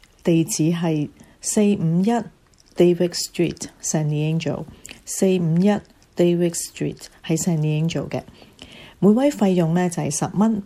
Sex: female